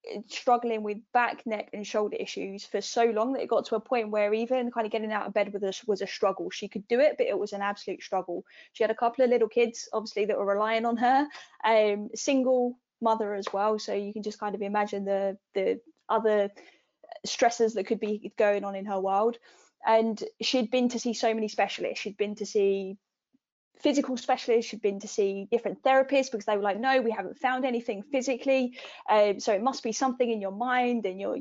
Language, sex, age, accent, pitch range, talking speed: English, female, 10-29, British, 210-250 Hz, 225 wpm